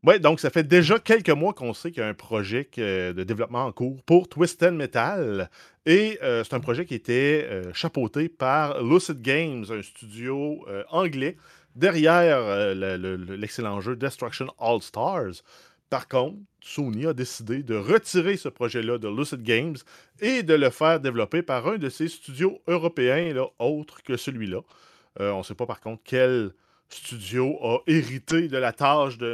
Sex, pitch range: male, 110-145 Hz